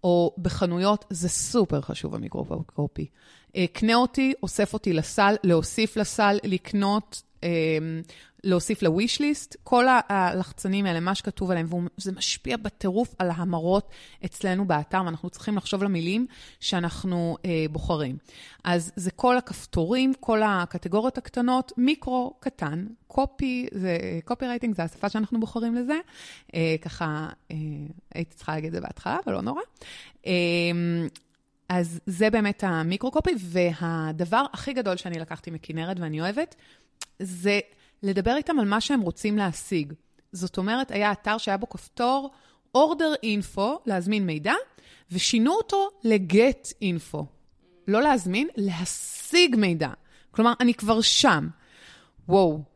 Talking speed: 130 wpm